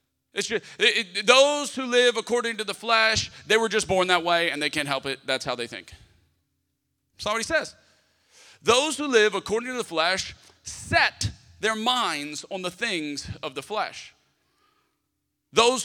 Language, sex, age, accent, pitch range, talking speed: English, male, 40-59, American, 175-265 Hz, 180 wpm